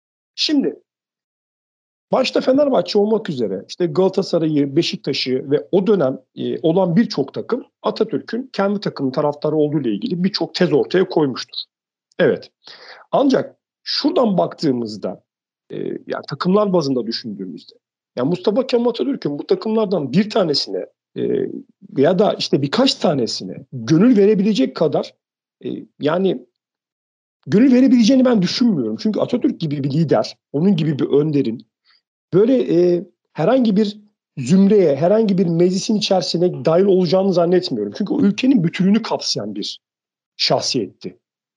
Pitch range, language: 170-235 Hz, Turkish